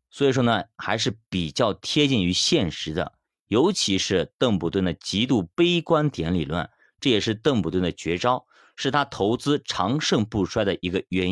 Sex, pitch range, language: male, 90-145 Hz, Chinese